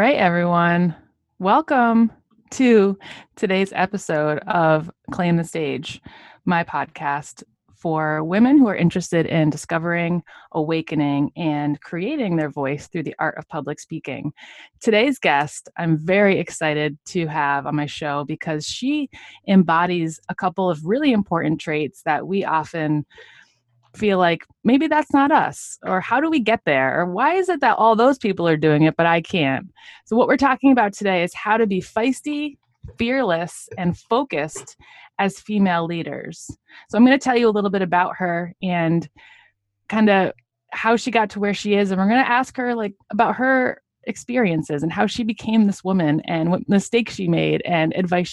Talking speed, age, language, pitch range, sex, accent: 175 wpm, 20-39, English, 160-225 Hz, female, American